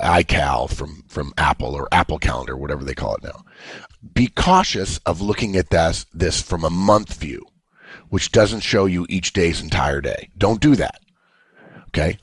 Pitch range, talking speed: 80-110 Hz, 170 wpm